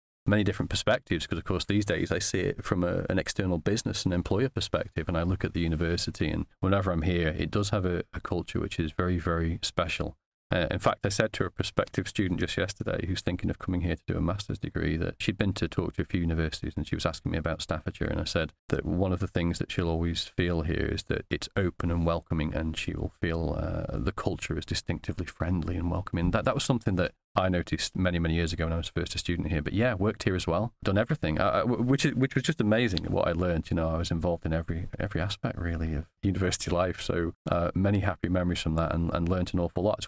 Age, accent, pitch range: 40-59, British, 85-100 Hz